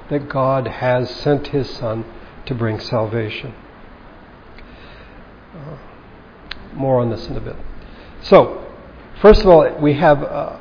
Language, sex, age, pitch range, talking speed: English, male, 60-79, 120-150 Hz, 125 wpm